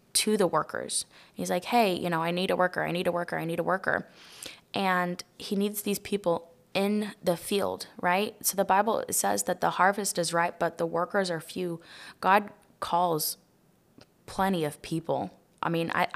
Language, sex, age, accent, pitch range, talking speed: English, female, 20-39, American, 170-205 Hz, 190 wpm